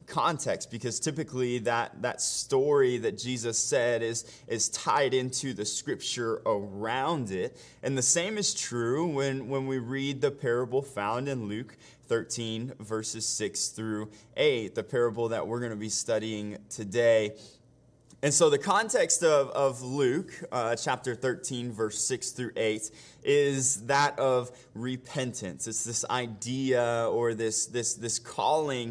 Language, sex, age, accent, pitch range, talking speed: English, male, 20-39, American, 115-140 Hz, 145 wpm